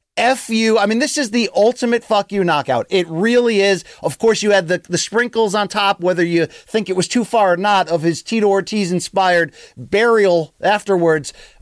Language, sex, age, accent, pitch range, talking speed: English, male, 30-49, American, 170-215 Hz, 195 wpm